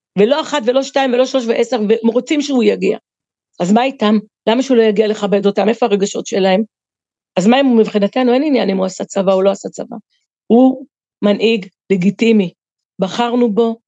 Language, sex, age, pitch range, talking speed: Hebrew, female, 40-59, 205-255 Hz, 185 wpm